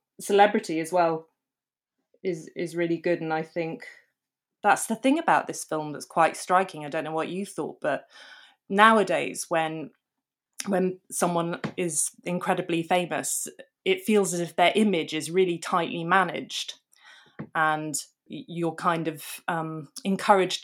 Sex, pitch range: female, 160-205 Hz